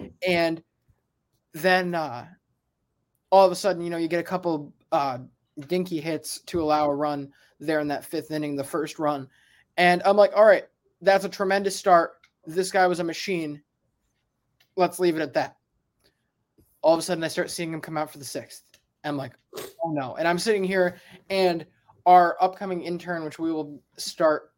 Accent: American